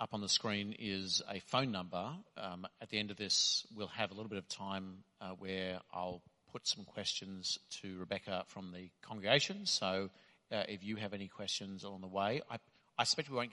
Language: English